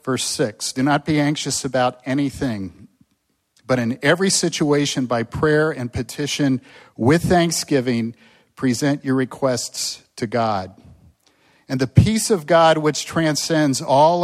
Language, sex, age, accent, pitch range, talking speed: English, male, 50-69, American, 115-155 Hz, 130 wpm